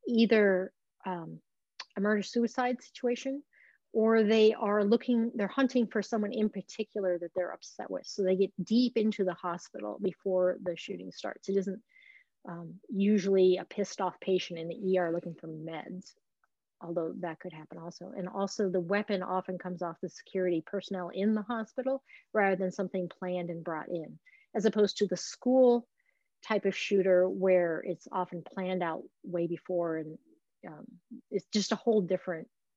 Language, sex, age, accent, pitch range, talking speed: English, female, 30-49, American, 180-225 Hz, 170 wpm